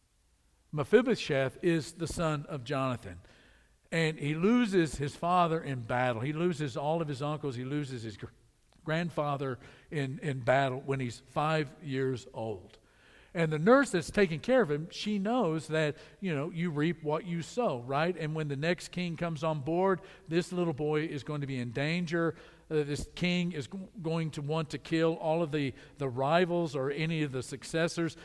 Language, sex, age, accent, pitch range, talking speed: English, male, 50-69, American, 145-180 Hz, 185 wpm